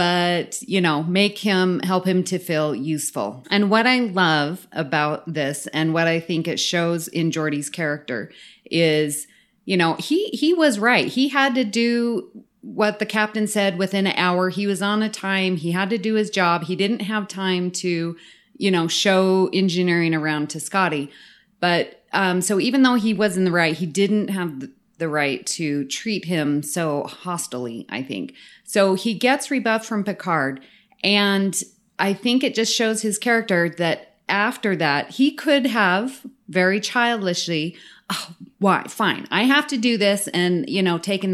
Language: English